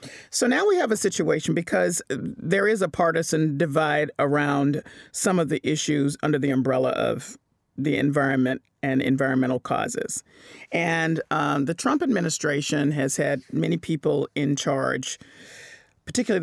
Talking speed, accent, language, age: 140 wpm, American, English, 40-59